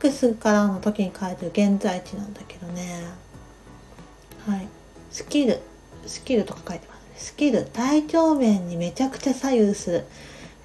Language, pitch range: Japanese, 200-245 Hz